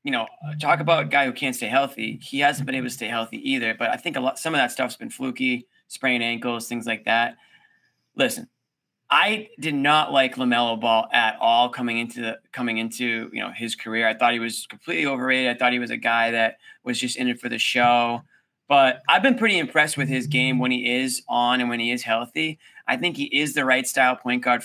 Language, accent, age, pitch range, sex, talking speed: English, American, 20-39, 125-180 Hz, male, 240 wpm